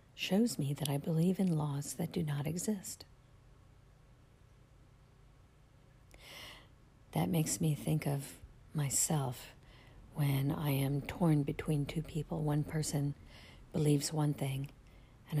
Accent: American